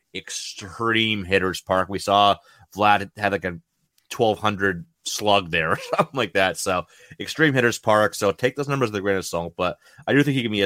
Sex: male